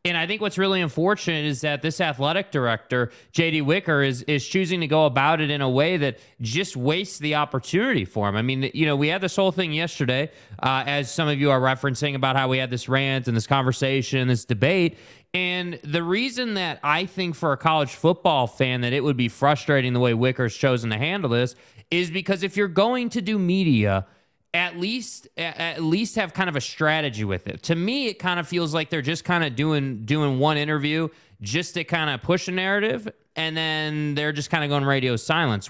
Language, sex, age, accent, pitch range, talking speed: English, male, 20-39, American, 135-170 Hz, 220 wpm